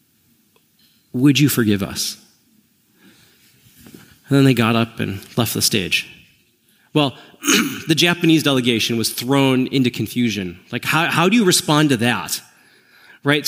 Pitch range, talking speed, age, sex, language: 130-190 Hz, 135 wpm, 30-49, male, English